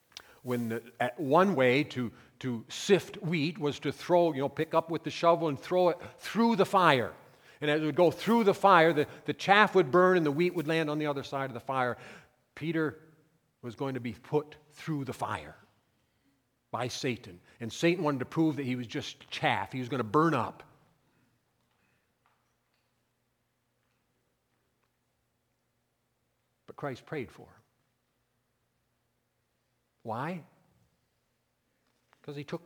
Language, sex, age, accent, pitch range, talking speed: English, male, 50-69, American, 130-180 Hz, 160 wpm